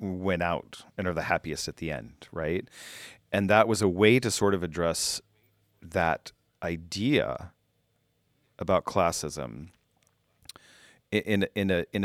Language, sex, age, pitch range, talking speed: English, male, 40-59, 85-110 Hz, 120 wpm